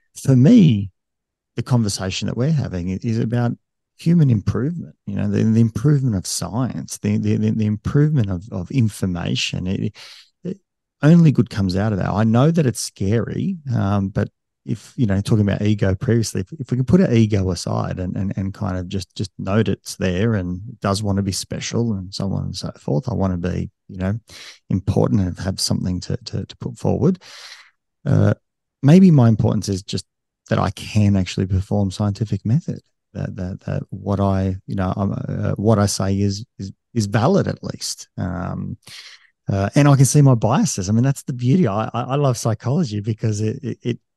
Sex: male